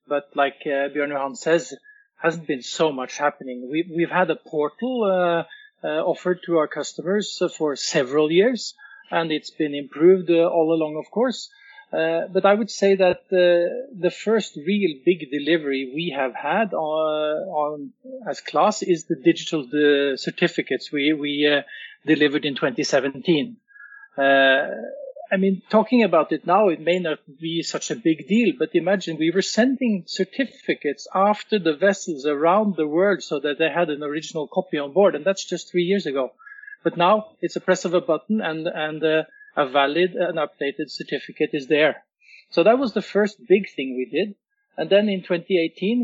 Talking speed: 170 wpm